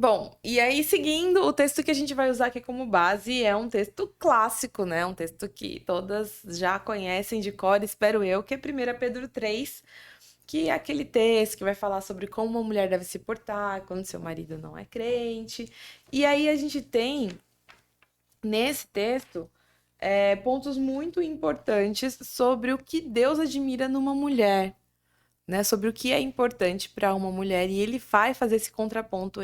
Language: Portuguese